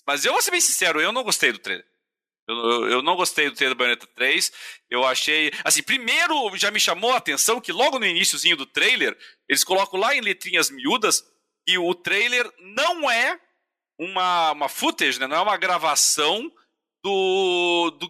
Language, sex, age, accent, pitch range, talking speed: Portuguese, male, 40-59, Brazilian, 180-275 Hz, 185 wpm